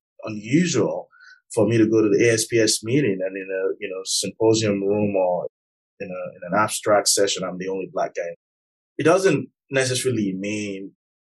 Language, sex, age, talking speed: English, male, 30-49, 170 wpm